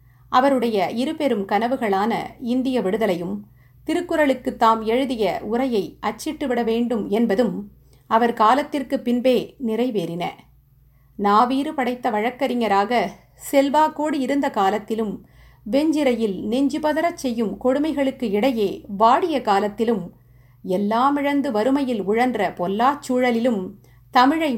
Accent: native